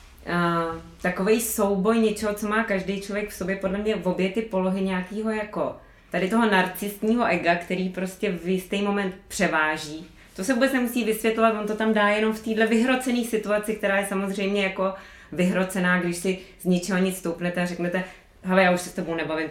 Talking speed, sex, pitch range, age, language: 190 wpm, female, 170-215 Hz, 20-39, Czech